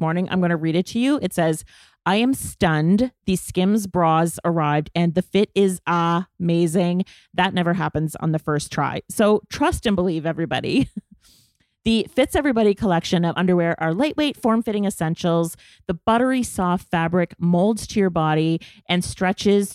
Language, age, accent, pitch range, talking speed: English, 30-49, American, 170-210 Hz, 165 wpm